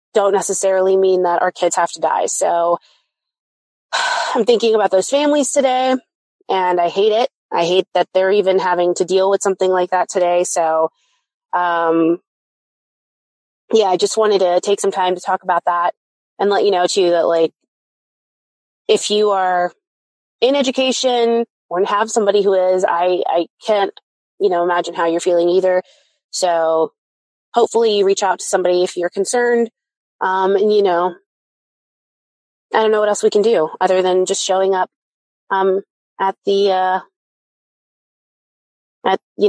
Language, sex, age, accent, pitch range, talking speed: English, female, 20-39, American, 180-235 Hz, 165 wpm